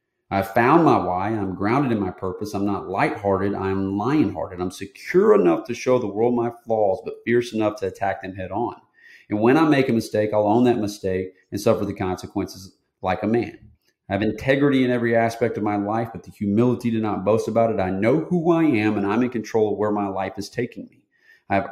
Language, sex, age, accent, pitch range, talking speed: English, male, 40-59, American, 100-120 Hz, 225 wpm